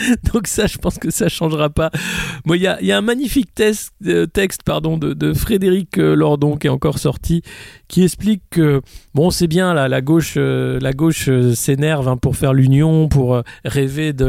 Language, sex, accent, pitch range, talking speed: French, male, French, 130-165 Hz, 195 wpm